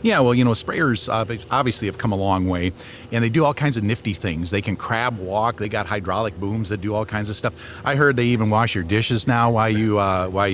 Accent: American